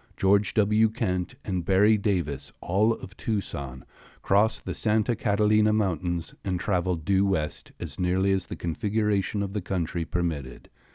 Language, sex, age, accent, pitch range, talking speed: English, male, 50-69, American, 90-125 Hz, 150 wpm